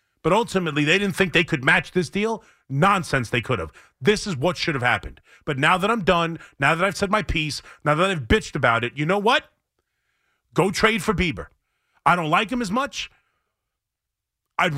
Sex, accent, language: male, American, English